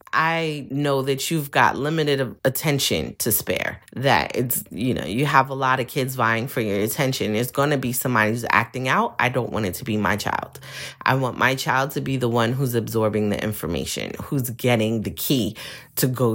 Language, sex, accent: English, female, American